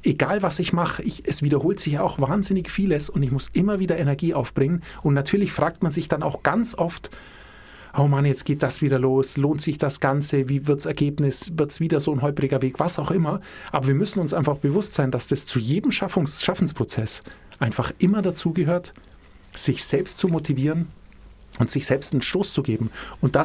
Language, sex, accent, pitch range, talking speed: German, male, German, 135-175 Hz, 210 wpm